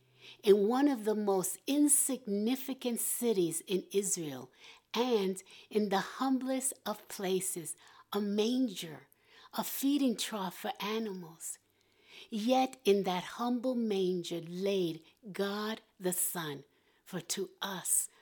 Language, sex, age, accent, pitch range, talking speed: English, female, 60-79, American, 185-250 Hz, 110 wpm